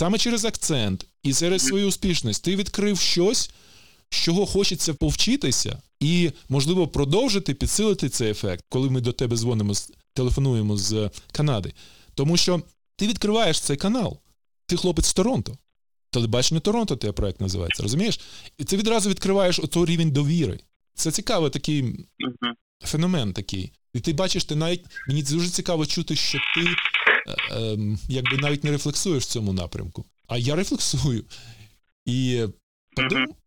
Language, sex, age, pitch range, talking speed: Ukrainian, male, 20-39, 115-170 Hz, 145 wpm